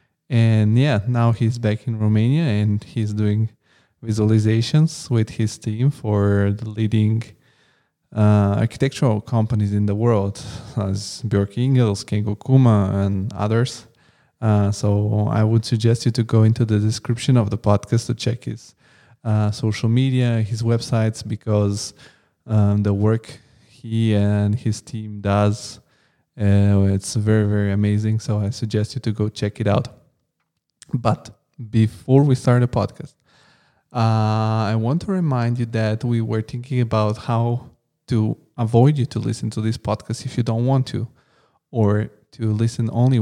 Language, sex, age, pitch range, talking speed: English, male, 20-39, 105-120 Hz, 155 wpm